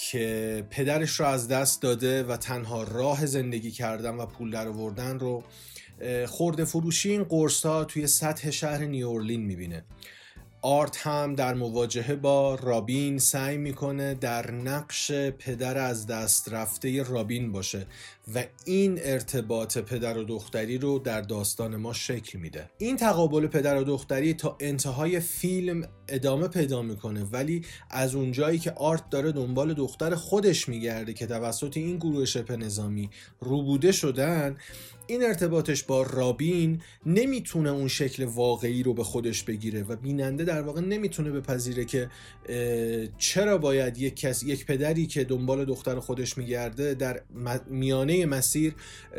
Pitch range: 120-150 Hz